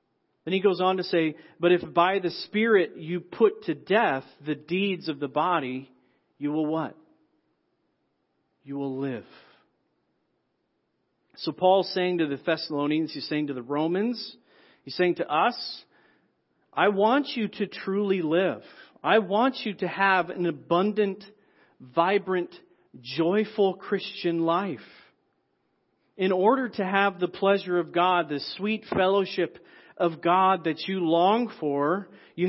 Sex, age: male, 40-59